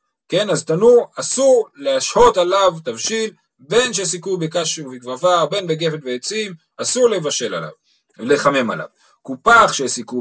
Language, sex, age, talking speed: Hebrew, male, 40-59, 125 wpm